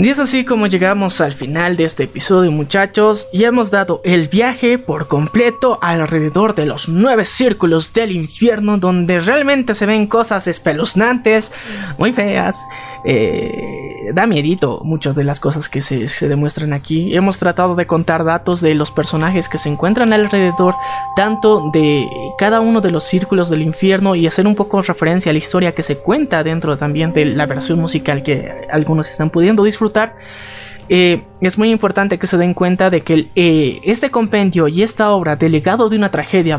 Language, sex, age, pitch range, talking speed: Spanish, male, 20-39, 160-215 Hz, 180 wpm